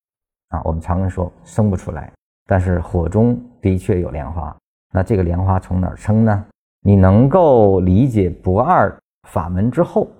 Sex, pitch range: male, 90-120 Hz